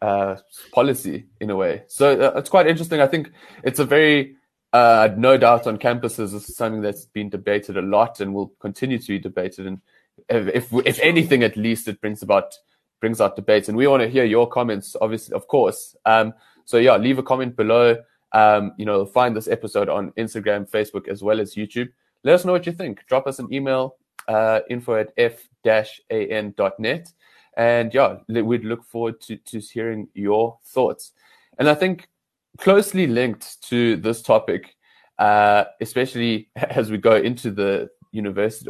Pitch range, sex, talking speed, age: 105-130 Hz, male, 190 wpm, 20-39